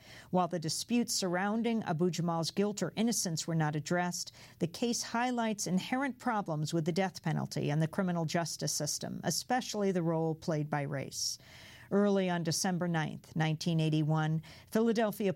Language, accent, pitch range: English, American, 160-200 Hz